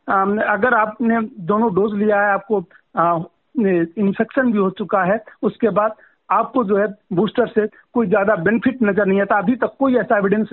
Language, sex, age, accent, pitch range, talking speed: Hindi, male, 50-69, native, 210-255 Hz, 175 wpm